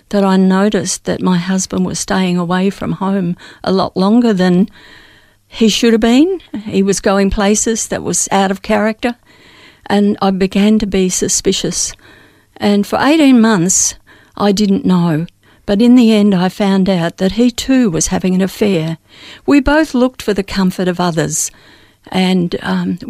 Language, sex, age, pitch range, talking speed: English, female, 60-79, 185-230 Hz, 170 wpm